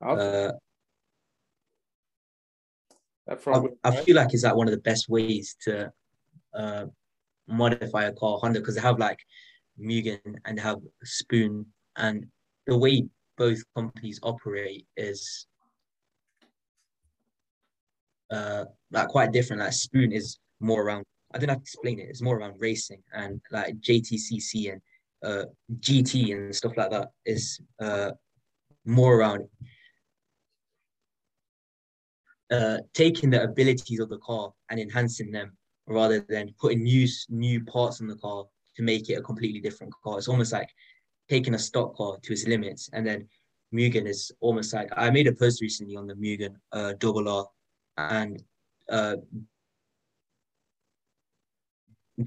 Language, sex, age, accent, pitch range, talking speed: English, male, 20-39, British, 105-120 Hz, 140 wpm